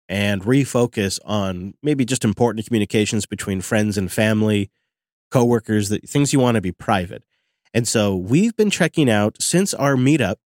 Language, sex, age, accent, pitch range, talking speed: English, male, 30-49, American, 100-135 Hz, 155 wpm